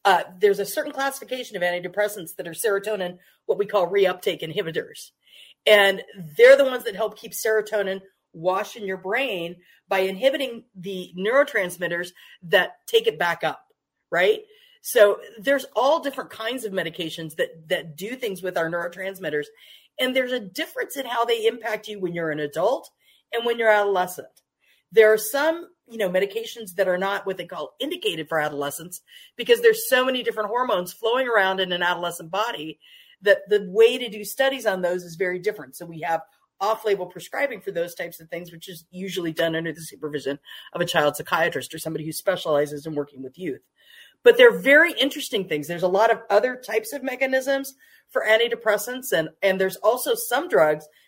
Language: English